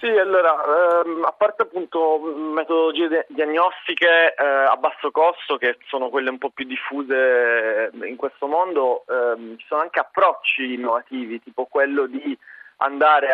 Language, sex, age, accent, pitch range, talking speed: Italian, male, 30-49, native, 135-180 Hz, 145 wpm